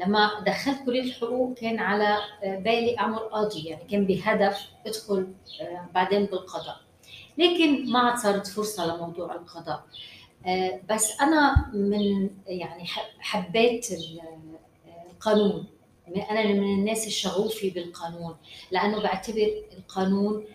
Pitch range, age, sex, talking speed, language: 185-220 Hz, 30-49, female, 105 wpm, Arabic